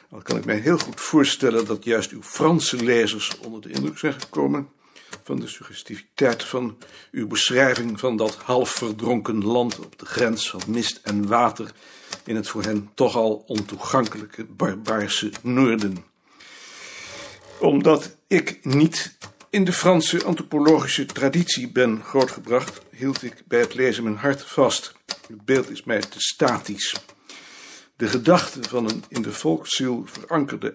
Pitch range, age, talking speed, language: 110-140 Hz, 60-79, 150 wpm, Dutch